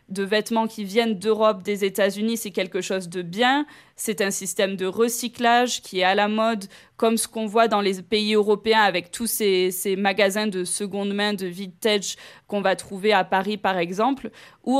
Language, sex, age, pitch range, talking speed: French, female, 20-39, 195-230 Hz, 195 wpm